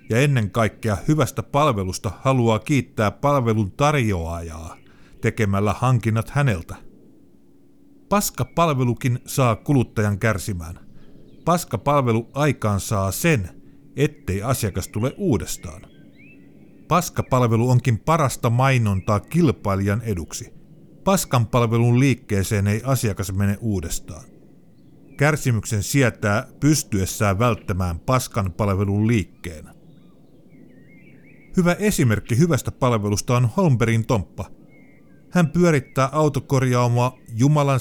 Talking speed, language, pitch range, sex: 85 wpm, Finnish, 105-140 Hz, male